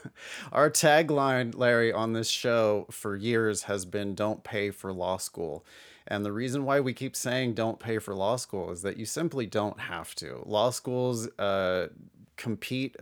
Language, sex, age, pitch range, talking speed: English, male, 30-49, 100-120 Hz, 175 wpm